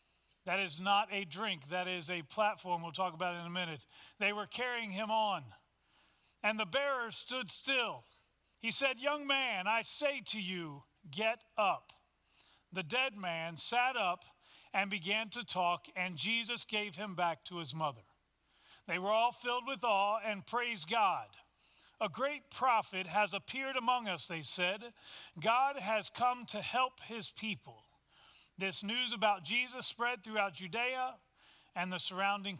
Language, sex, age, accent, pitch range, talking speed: English, male, 40-59, American, 190-250 Hz, 160 wpm